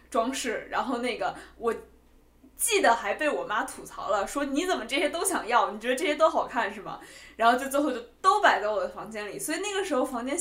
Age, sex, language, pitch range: 20-39, female, Chinese, 220-310 Hz